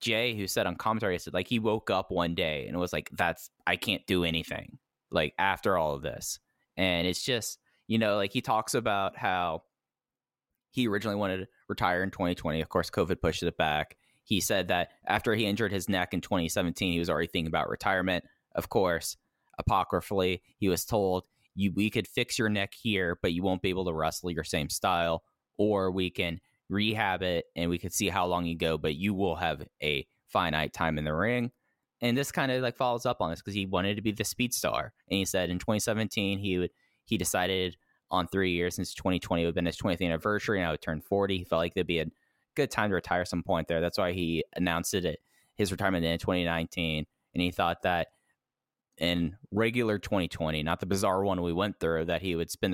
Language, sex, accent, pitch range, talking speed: English, male, American, 85-100 Hz, 220 wpm